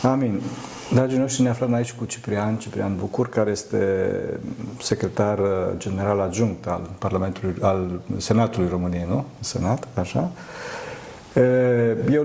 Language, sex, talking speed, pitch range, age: Romanian, male, 120 wpm, 105-130 Hz, 40-59